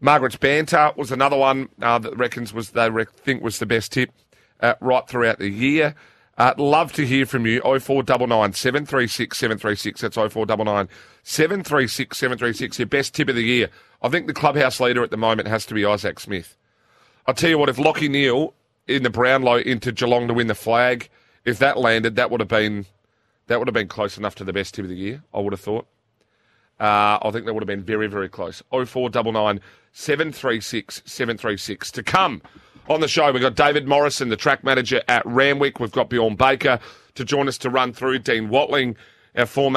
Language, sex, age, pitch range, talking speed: English, male, 30-49, 115-135 Hz, 230 wpm